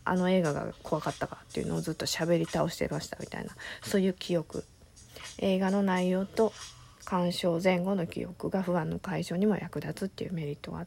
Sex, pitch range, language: female, 160-195 Hz, Japanese